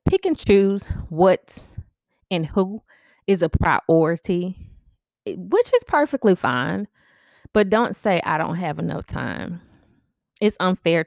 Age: 20-39